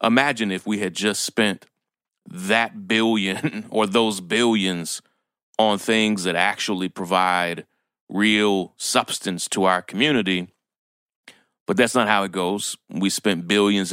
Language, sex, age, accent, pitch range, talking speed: English, male, 30-49, American, 85-105 Hz, 130 wpm